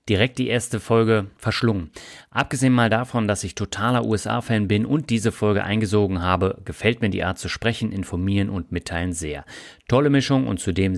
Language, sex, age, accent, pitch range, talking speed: German, male, 30-49, German, 95-120 Hz, 175 wpm